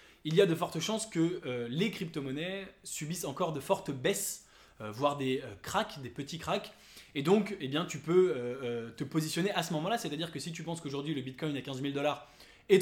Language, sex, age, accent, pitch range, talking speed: English, male, 20-39, French, 140-180 Hz, 230 wpm